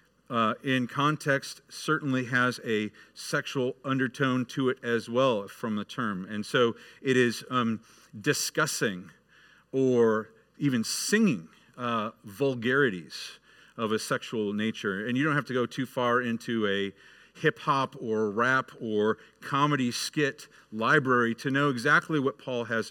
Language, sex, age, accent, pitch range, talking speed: English, male, 50-69, American, 110-135 Hz, 140 wpm